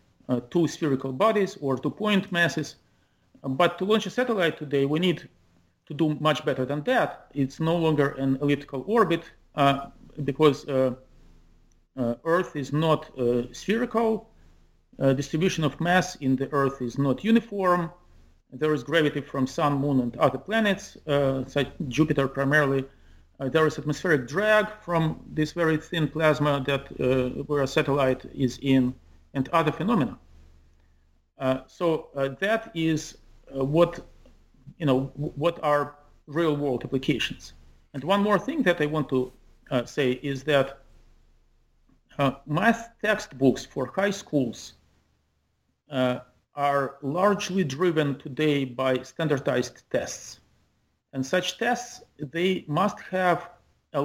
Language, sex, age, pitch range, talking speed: English, male, 40-59, 130-170 Hz, 140 wpm